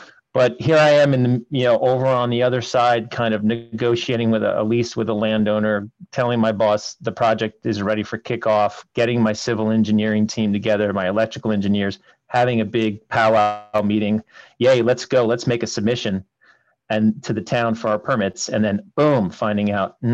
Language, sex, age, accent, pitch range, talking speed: English, male, 40-59, American, 105-125 Hz, 195 wpm